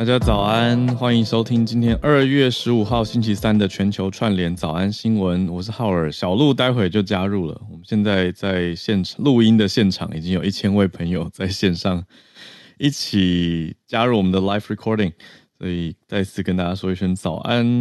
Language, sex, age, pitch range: Chinese, male, 20-39, 90-115 Hz